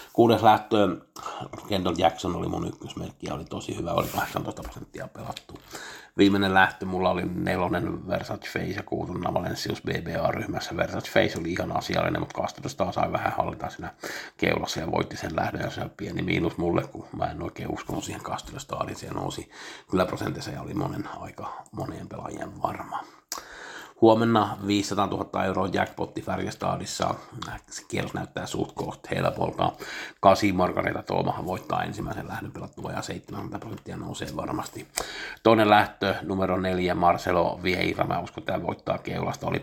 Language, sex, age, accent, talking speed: Finnish, male, 50-69, native, 150 wpm